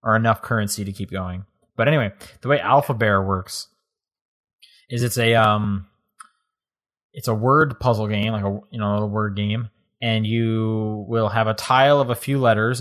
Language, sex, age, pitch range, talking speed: English, male, 20-39, 105-120 Hz, 185 wpm